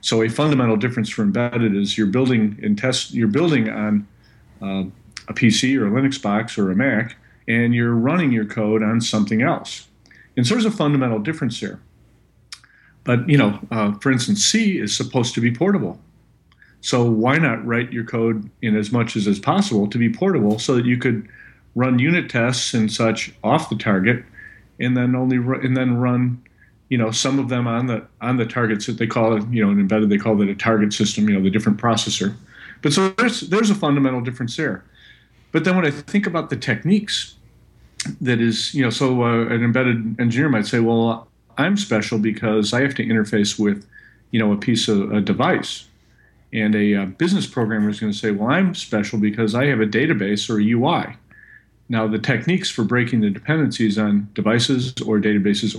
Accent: American